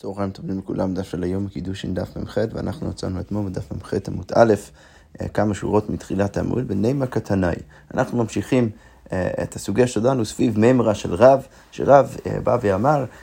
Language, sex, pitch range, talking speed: Hebrew, male, 100-135 Hz, 160 wpm